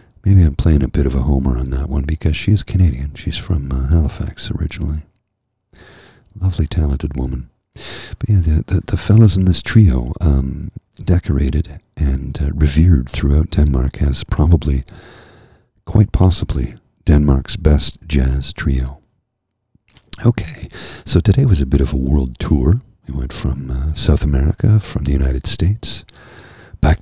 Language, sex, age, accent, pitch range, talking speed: English, male, 50-69, American, 70-100 Hz, 150 wpm